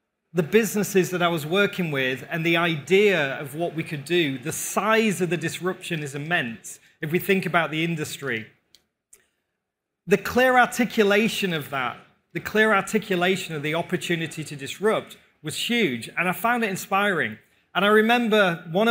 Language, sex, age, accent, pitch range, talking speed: English, male, 30-49, British, 160-205 Hz, 165 wpm